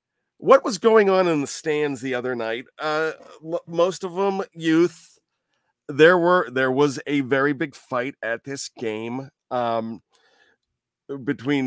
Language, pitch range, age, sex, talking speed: English, 125-150 Hz, 40-59, male, 145 wpm